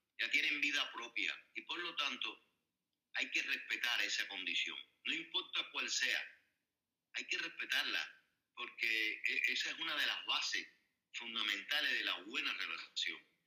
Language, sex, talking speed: Spanish, male, 145 wpm